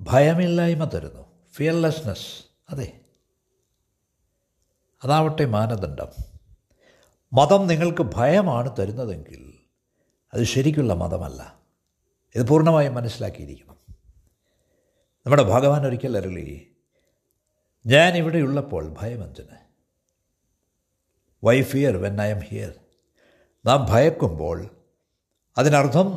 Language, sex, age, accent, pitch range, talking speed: Malayalam, male, 60-79, native, 95-155 Hz, 70 wpm